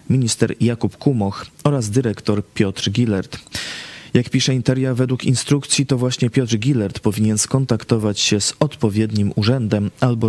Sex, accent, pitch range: male, native, 100-130 Hz